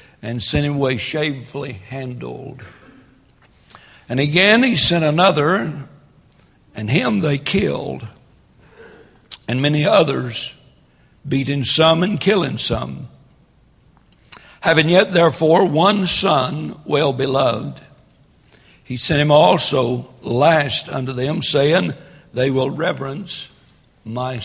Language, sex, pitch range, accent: English, male, 130-165 Hz, American